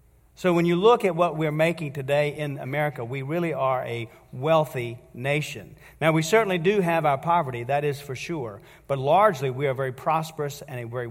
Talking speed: 205 wpm